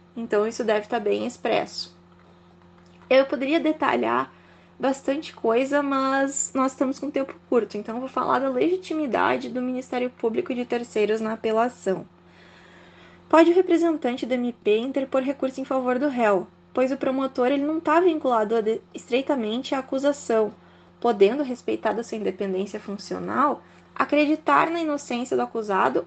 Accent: Brazilian